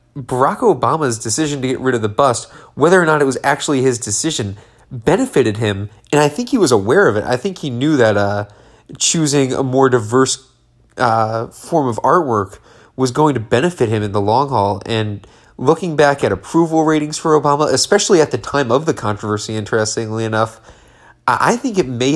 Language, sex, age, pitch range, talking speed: English, male, 30-49, 110-145 Hz, 195 wpm